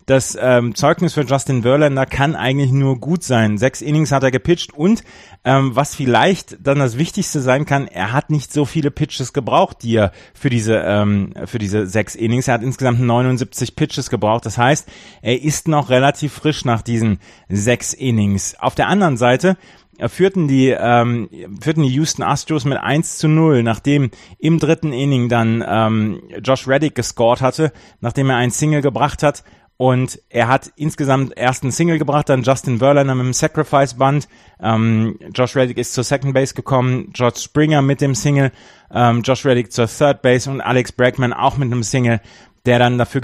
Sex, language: male, German